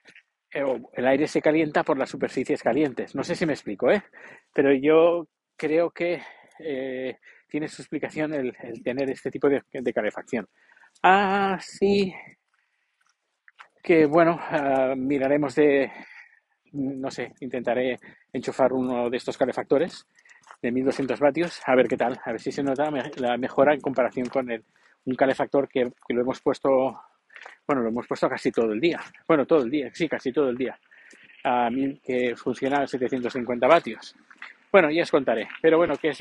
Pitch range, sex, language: 130-170 Hz, male, Spanish